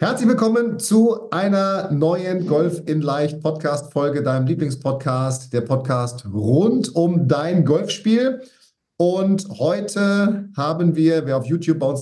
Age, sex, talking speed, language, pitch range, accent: 40-59, male, 130 wpm, German, 130-175 Hz, German